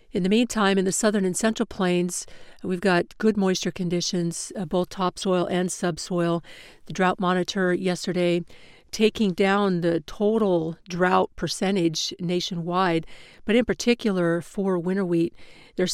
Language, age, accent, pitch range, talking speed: English, 50-69, American, 170-195 Hz, 140 wpm